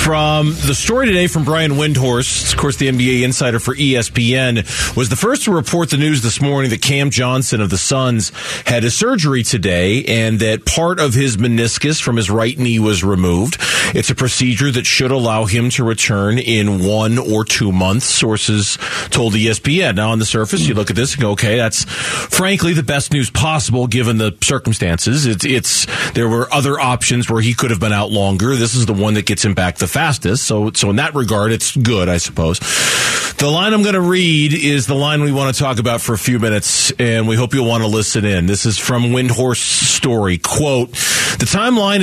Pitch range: 110-140 Hz